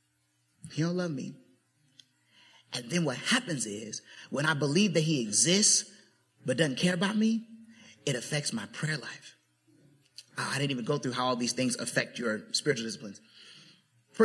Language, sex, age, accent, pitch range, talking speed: English, male, 30-49, American, 115-160 Hz, 165 wpm